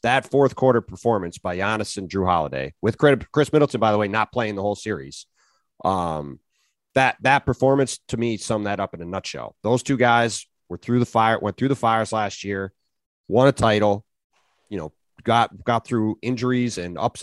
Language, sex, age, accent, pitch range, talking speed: English, male, 30-49, American, 100-125 Hz, 195 wpm